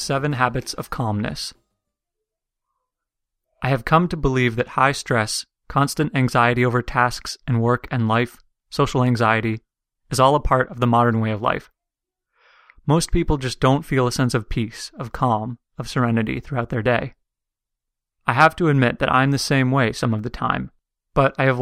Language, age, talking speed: English, 30-49, 180 wpm